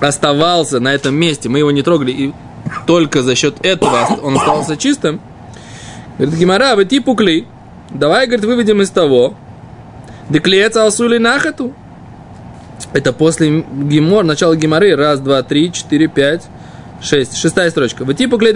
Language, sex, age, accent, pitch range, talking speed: Russian, male, 20-39, native, 145-200 Hz, 140 wpm